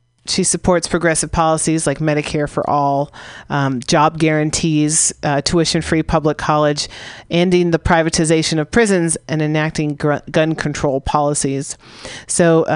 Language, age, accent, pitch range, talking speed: English, 40-59, American, 145-170 Hz, 125 wpm